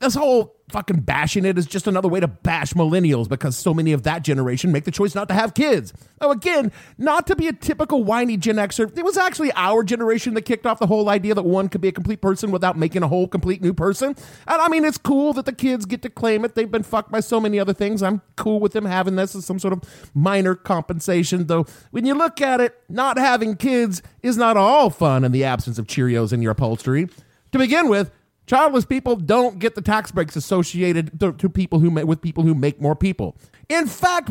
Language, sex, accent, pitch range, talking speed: English, male, American, 175-250 Hz, 240 wpm